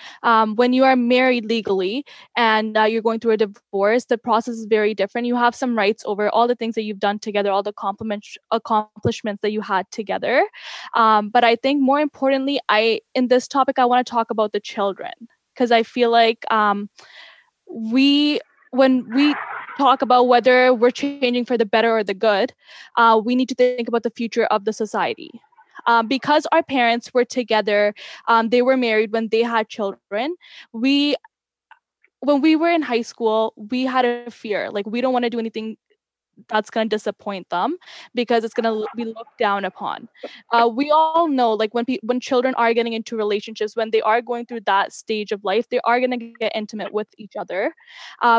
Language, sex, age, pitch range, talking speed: English, female, 10-29, 215-255 Hz, 200 wpm